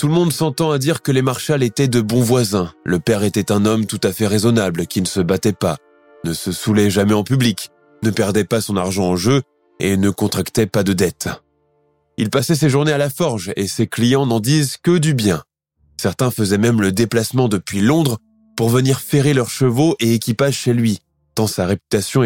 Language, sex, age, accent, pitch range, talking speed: French, male, 20-39, French, 100-145 Hz, 215 wpm